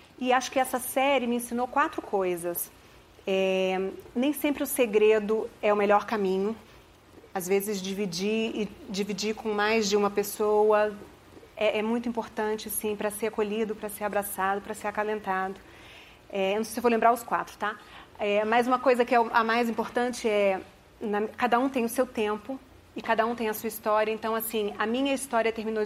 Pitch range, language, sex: 210-245 Hz, Portuguese, female